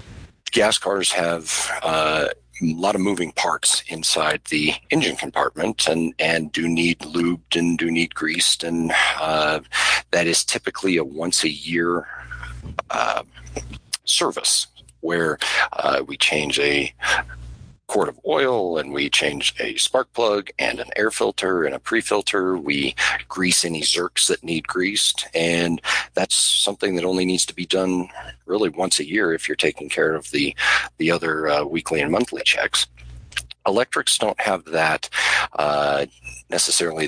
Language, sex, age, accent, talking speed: English, male, 50-69, American, 150 wpm